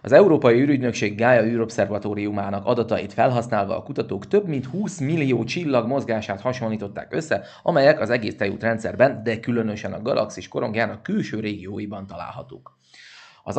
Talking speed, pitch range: 135 wpm, 105-130 Hz